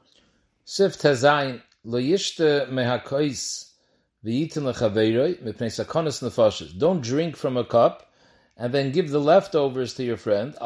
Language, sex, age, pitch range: English, male, 40-59, 120-150 Hz